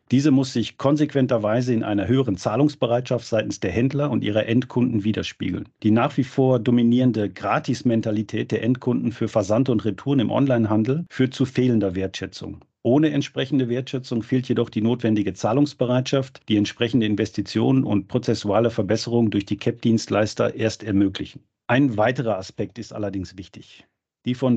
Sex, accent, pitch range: male, German, 105-130 Hz